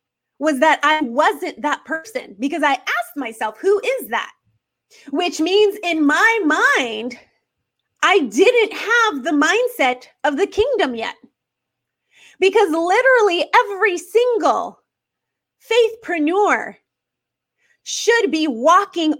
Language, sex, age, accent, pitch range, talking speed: English, female, 30-49, American, 290-405 Hz, 110 wpm